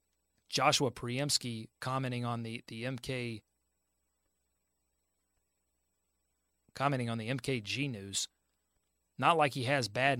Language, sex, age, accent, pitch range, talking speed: English, male, 30-49, American, 100-135 Hz, 100 wpm